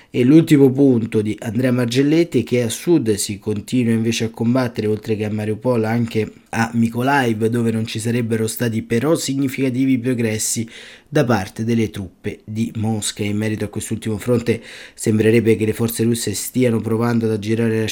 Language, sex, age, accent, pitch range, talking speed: Italian, male, 20-39, native, 110-125 Hz, 165 wpm